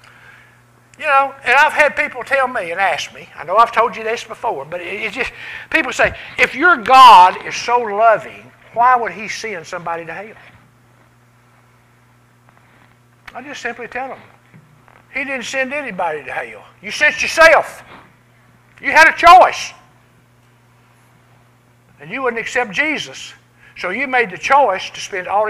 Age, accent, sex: 60-79, American, male